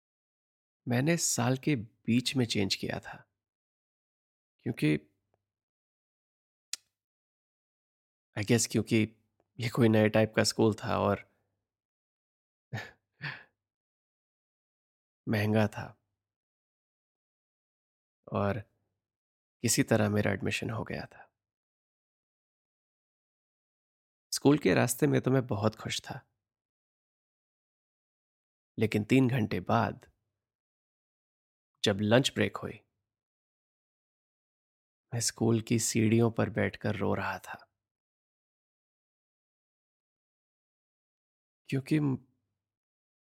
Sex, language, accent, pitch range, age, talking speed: male, Hindi, native, 100-115 Hz, 30-49, 80 wpm